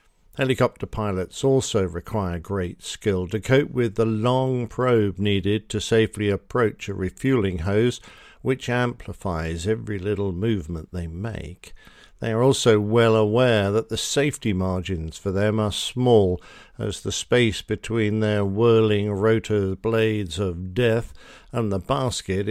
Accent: British